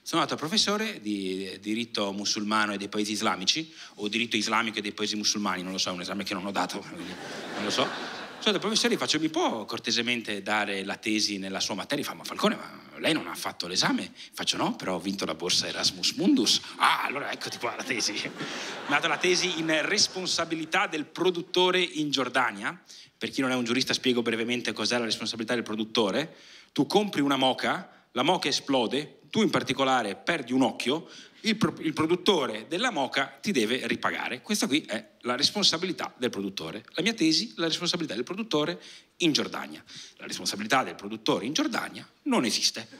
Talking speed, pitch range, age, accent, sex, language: 190 wpm, 105-175 Hz, 30-49, native, male, Italian